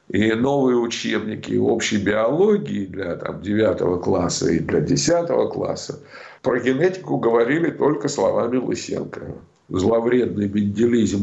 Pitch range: 110-165 Hz